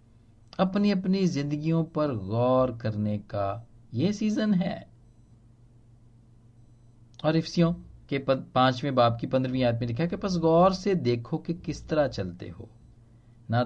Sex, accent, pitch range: male, native, 110-155 Hz